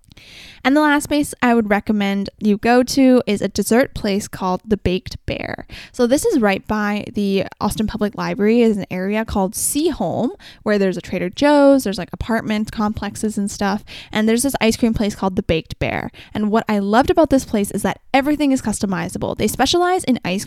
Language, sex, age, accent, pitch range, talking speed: English, female, 10-29, American, 200-255 Hz, 200 wpm